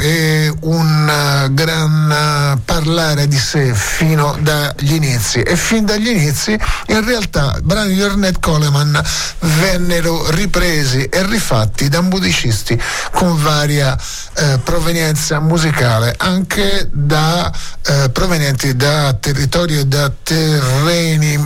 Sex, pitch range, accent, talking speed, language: male, 140-165 Hz, native, 115 wpm, Italian